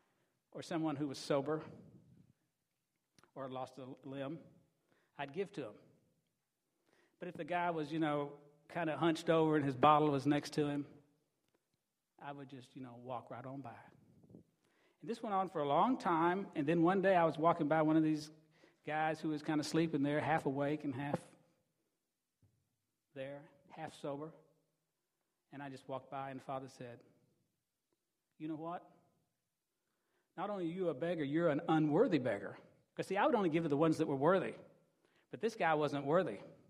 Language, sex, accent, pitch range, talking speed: English, male, American, 140-170 Hz, 180 wpm